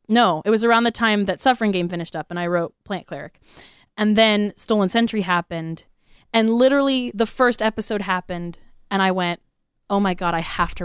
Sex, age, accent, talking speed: female, 20-39, American, 200 wpm